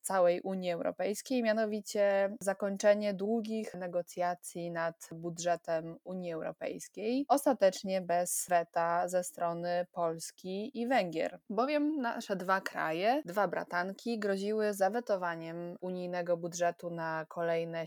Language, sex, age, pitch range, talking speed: Polish, female, 20-39, 175-205 Hz, 105 wpm